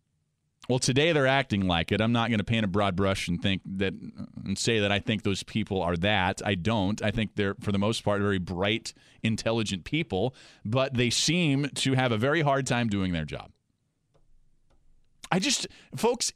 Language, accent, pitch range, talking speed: English, American, 120-190 Hz, 200 wpm